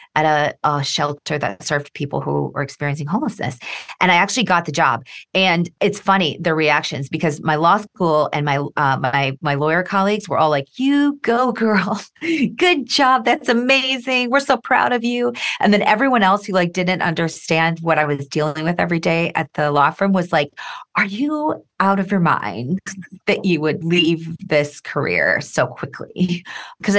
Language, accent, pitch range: English, American, 150-200 Hz